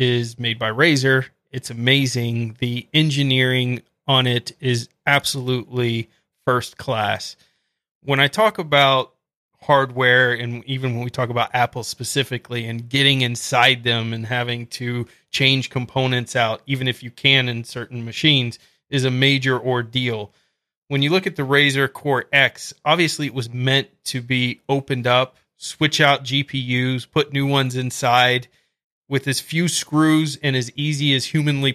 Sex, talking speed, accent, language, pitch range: male, 150 wpm, American, English, 125-140 Hz